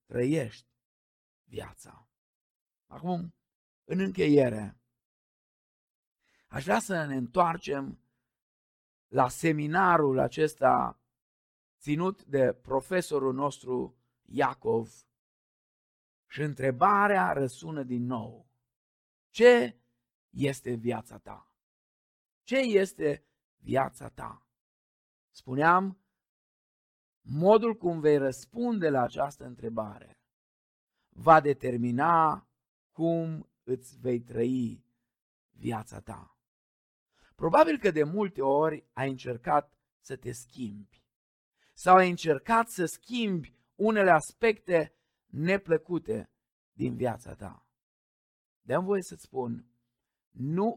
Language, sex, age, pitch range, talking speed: Romanian, male, 50-69, 120-170 Hz, 85 wpm